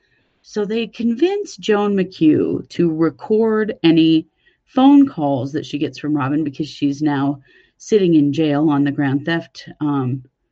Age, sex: 40-59, female